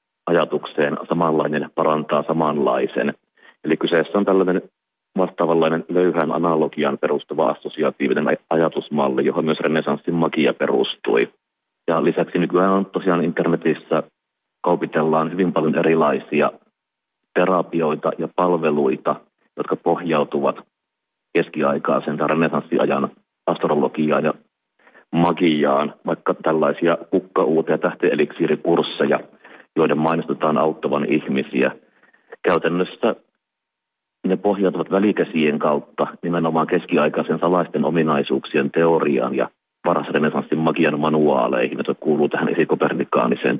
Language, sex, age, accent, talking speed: Finnish, male, 30-49, native, 90 wpm